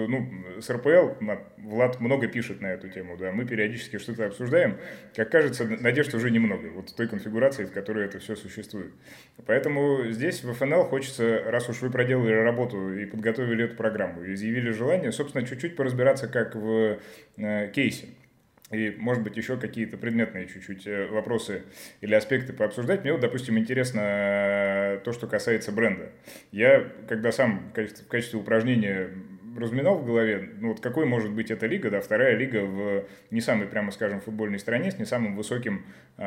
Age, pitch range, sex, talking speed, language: 20-39, 105-120 Hz, male, 170 wpm, Russian